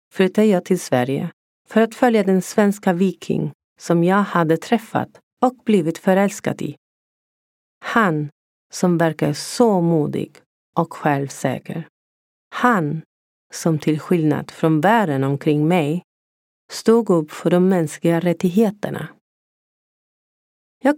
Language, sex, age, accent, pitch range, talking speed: Swedish, female, 40-59, native, 155-225 Hz, 115 wpm